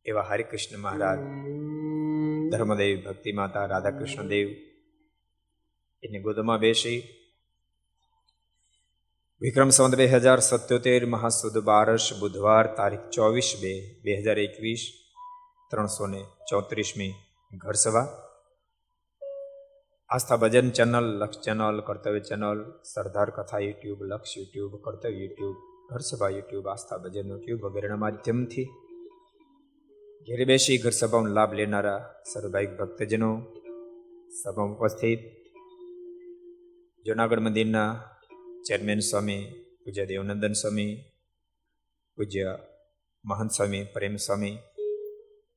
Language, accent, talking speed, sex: Gujarati, native, 65 wpm, male